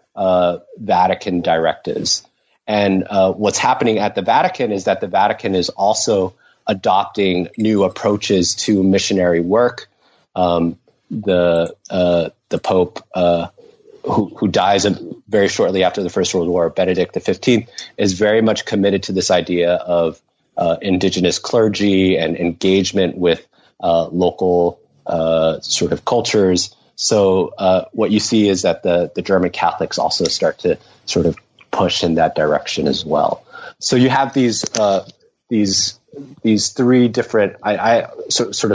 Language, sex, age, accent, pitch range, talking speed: English, male, 30-49, American, 90-105 Hz, 145 wpm